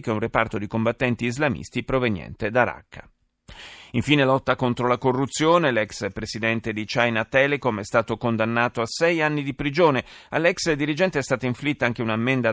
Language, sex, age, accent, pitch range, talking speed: Italian, male, 40-59, native, 115-150 Hz, 170 wpm